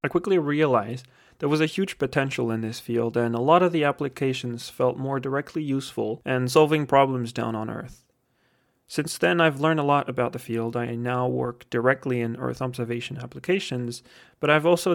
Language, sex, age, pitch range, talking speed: English, male, 30-49, 120-140 Hz, 190 wpm